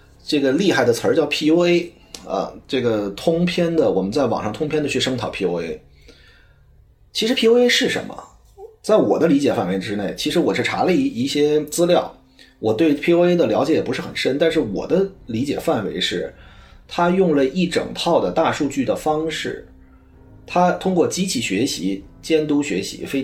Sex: male